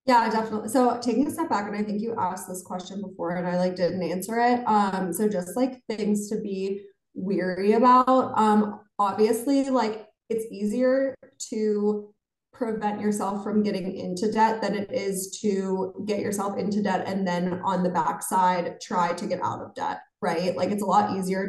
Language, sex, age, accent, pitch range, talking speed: English, female, 20-39, American, 180-210 Hz, 185 wpm